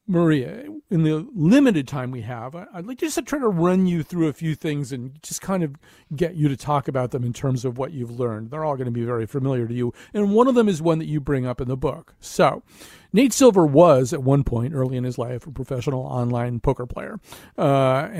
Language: English